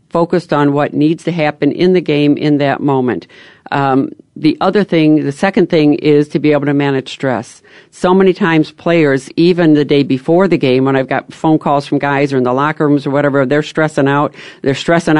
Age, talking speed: 50-69, 215 wpm